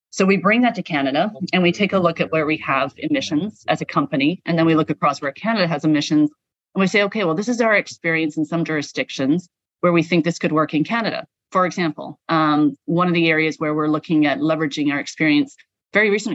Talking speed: 235 wpm